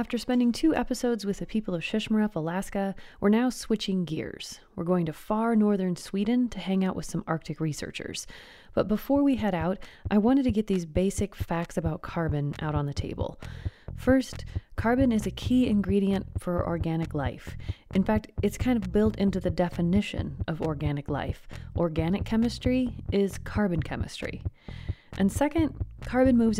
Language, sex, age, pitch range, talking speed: English, female, 30-49, 165-225 Hz, 170 wpm